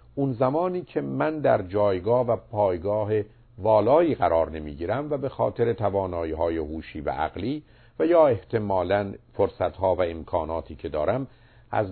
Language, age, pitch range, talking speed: Persian, 50-69, 90-120 Hz, 140 wpm